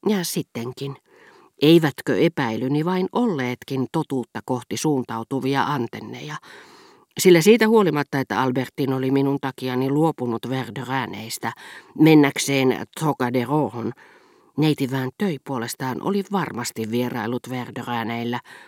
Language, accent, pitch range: Finnish, native, 120-160 Hz